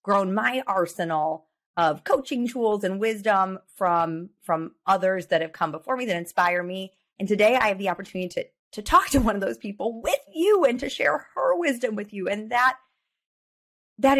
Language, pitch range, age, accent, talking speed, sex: English, 185-255 Hz, 30-49, American, 190 wpm, female